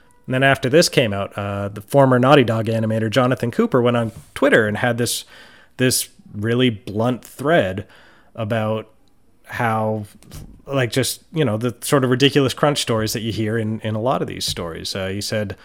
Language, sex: English, male